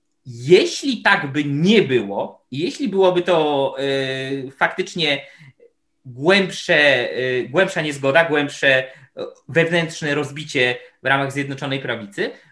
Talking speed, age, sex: 90 wpm, 20-39, male